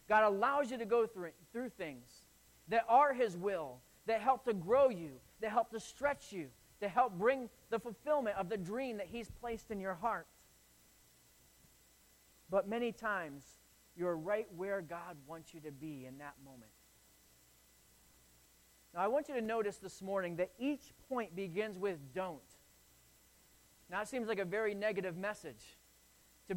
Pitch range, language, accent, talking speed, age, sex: 145-220 Hz, English, American, 165 wpm, 30-49, male